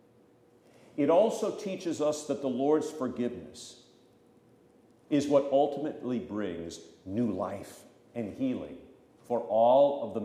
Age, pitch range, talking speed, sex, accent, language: 50-69, 110-140 Hz, 115 wpm, male, American, English